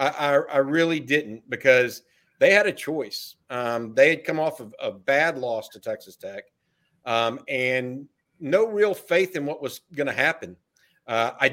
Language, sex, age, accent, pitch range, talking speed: English, male, 50-69, American, 125-155 Hz, 170 wpm